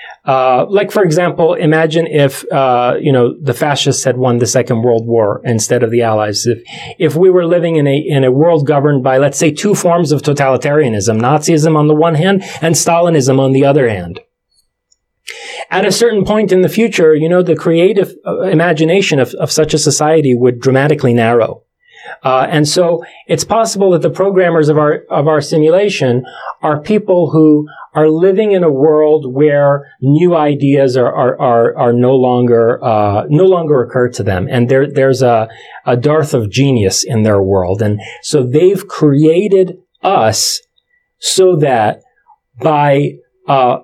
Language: English